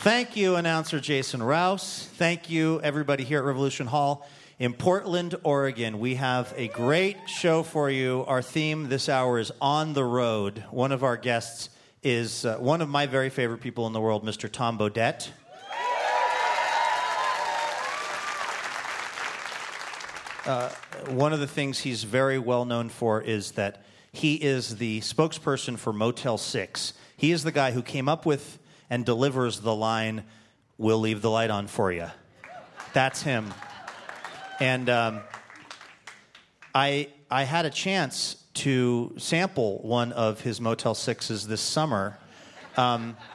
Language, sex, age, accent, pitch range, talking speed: English, male, 40-59, American, 115-145 Hz, 145 wpm